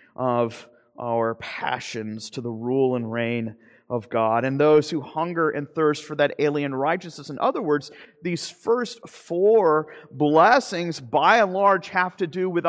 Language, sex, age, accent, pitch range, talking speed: English, male, 40-59, American, 140-175 Hz, 160 wpm